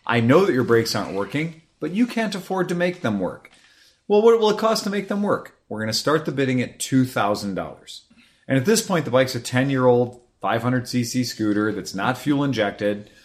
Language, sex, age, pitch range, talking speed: English, male, 30-49, 115-165 Hz, 220 wpm